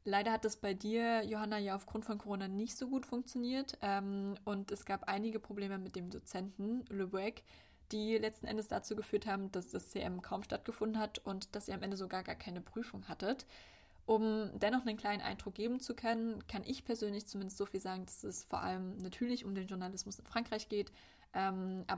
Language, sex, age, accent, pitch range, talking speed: German, female, 20-39, German, 195-220 Hz, 200 wpm